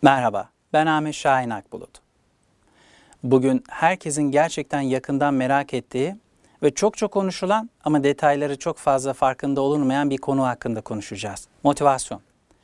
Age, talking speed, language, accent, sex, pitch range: 60-79, 125 wpm, Turkish, native, male, 135-175 Hz